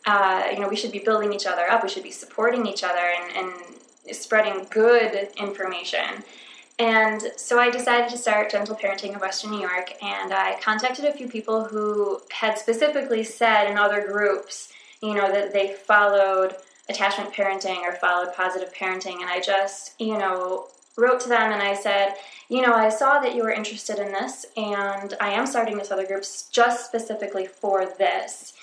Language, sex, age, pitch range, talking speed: English, female, 20-39, 195-225 Hz, 185 wpm